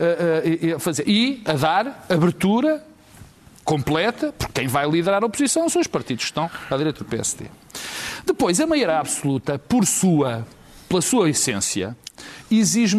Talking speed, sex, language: 155 wpm, male, Portuguese